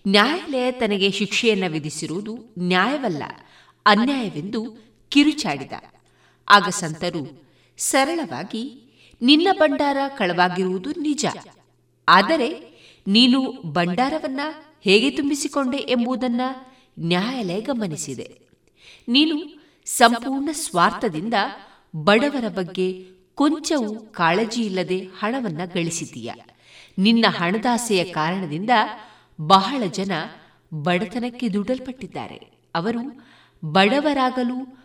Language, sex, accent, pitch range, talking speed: Kannada, female, native, 180-265 Hz, 65 wpm